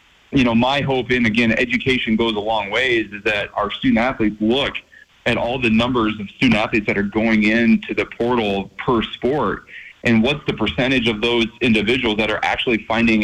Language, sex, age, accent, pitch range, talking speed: English, male, 30-49, American, 105-120 Hz, 195 wpm